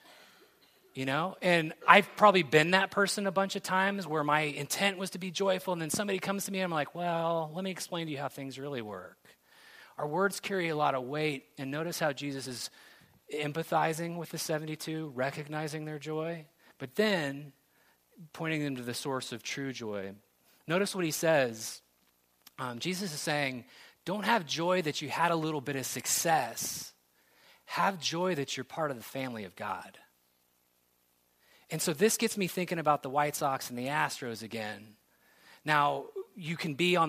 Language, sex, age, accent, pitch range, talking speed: English, male, 30-49, American, 135-175 Hz, 185 wpm